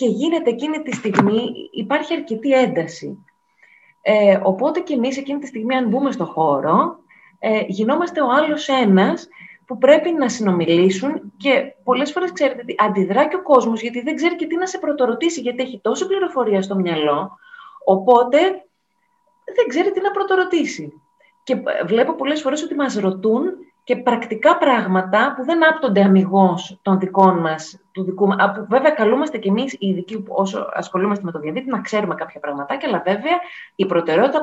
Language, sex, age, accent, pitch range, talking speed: Greek, female, 30-49, native, 195-310 Hz, 160 wpm